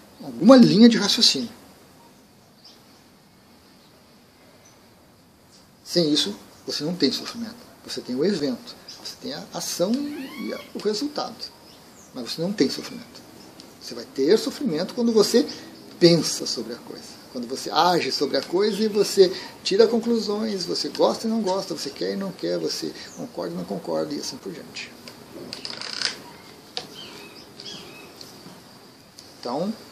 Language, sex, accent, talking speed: Portuguese, male, Brazilian, 130 wpm